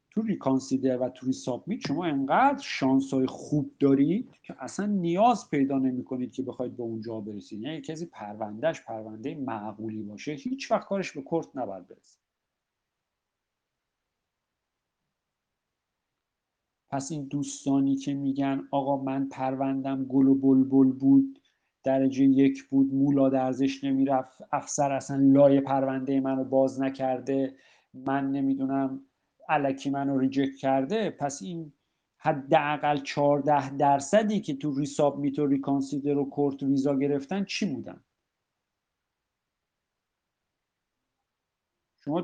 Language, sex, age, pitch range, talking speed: Persian, male, 50-69, 135-155 Hz, 115 wpm